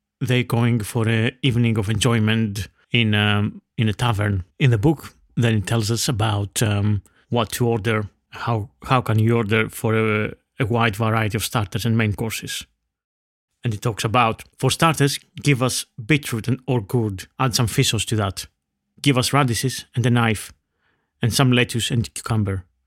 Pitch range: 105-125 Hz